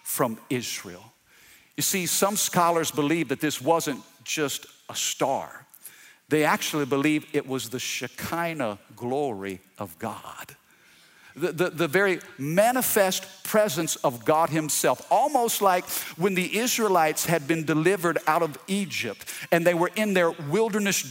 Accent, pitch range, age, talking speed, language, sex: American, 145-195 Hz, 50-69, 140 wpm, English, male